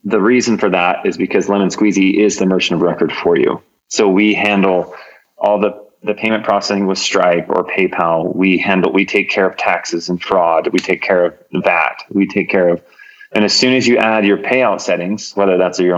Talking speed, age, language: 215 wpm, 30-49, English